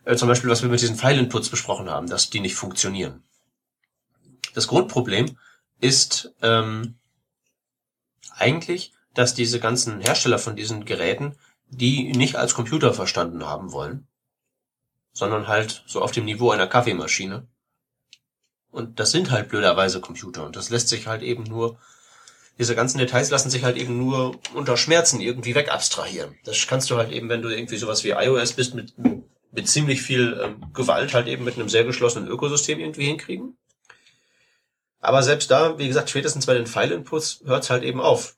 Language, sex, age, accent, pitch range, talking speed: German, male, 30-49, German, 115-130 Hz, 165 wpm